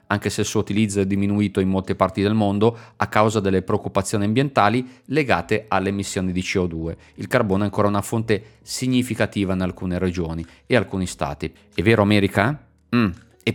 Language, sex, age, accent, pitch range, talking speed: Italian, male, 30-49, native, 90-120 Hz, 175 wpm